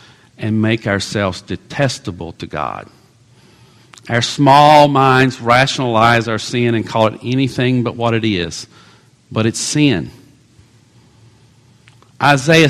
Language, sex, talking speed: English, male, 115 wpm